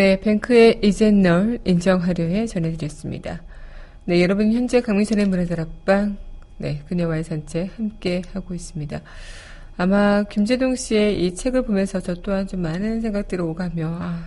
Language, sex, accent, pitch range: Korean, female, native, 175-215 Hz